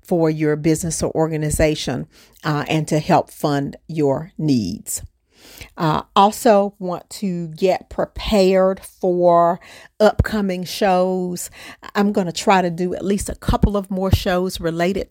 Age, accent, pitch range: 50-69, American, 160-185 Hz